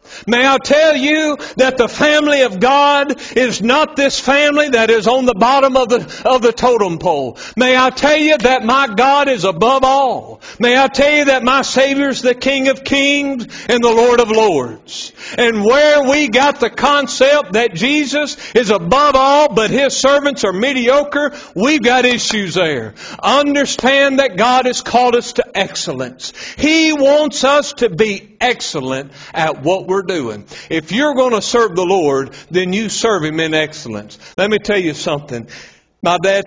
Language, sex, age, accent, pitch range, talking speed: English, male, 60-79, American, 200-275 Hz, 180 wpm